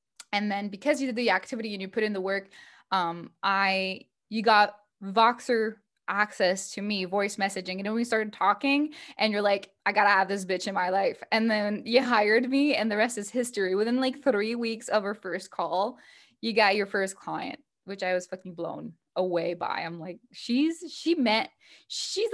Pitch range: 195-250 Hz